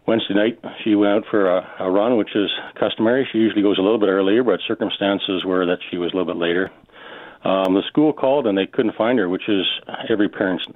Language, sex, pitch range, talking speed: English, male, 90-115 Hz, 235 wpm